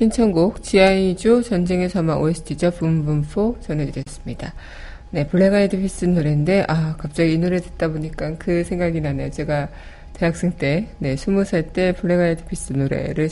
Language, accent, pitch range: Korean, native, 160-195 Hz